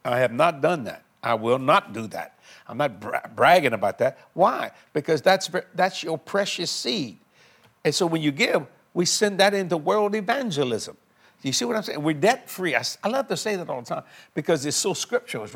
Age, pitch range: 60-79, 145-190 Hz